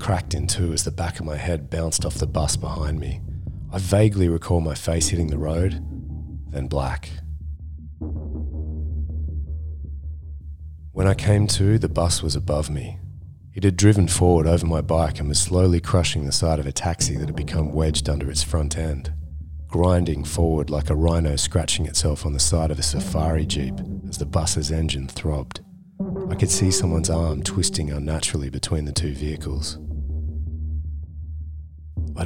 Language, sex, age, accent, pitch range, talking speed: English, male, 30-49, Australian, 75-95 Hz, 165 wpm